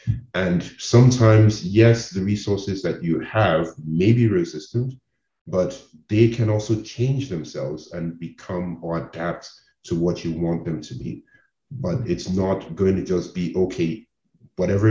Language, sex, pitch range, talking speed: English, male, 85-110 Hz, 150 wpm